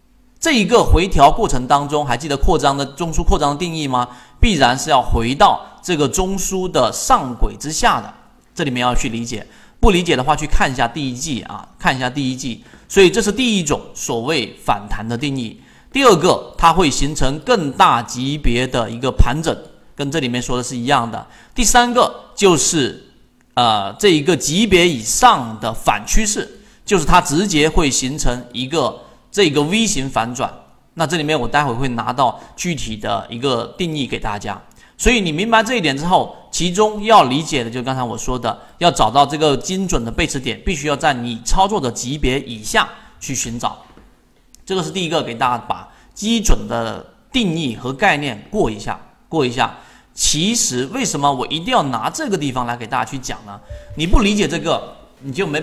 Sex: male